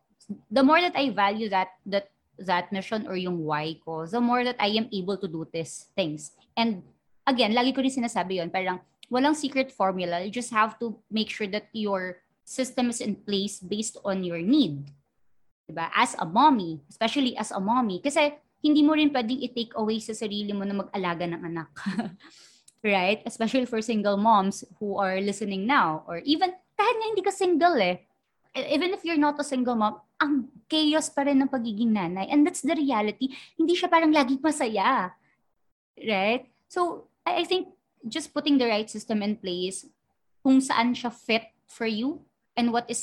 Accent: Filipino